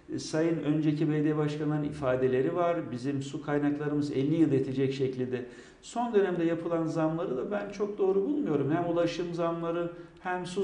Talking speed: 150 wpm